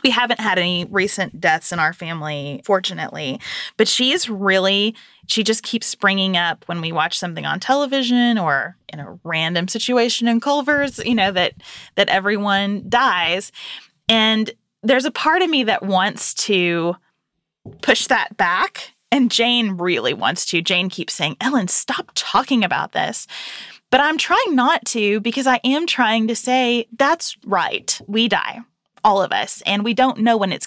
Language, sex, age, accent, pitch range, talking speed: English, female, 20-39, American, 185-245 Hz, 170 wpm